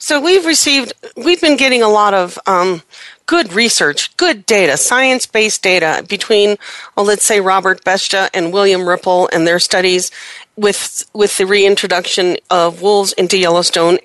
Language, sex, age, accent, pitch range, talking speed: English, female, 40-59, American, 190-240 Hz, 155 wpm